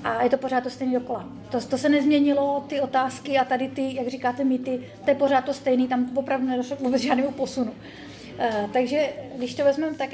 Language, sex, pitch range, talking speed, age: Czech, female, 235-270 Hz, 220 wpm, 30-49